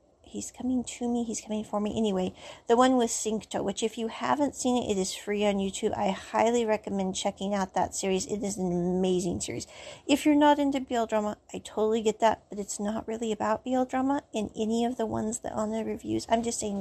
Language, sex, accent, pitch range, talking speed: English, female, American, 215-260 Hz, 230 wpm